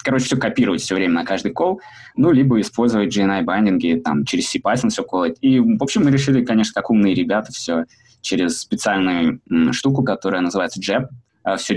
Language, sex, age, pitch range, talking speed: Russian, male, 20-39, 110-160 Hz, 180 wpm